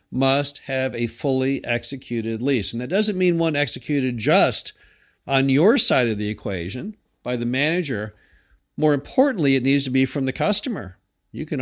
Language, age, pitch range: English, 50-69, 125-170 Hz